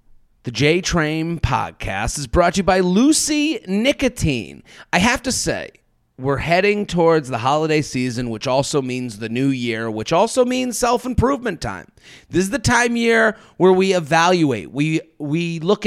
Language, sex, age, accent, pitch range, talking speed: English, male, 30-49, American, 155-215 Hz, 165 wpm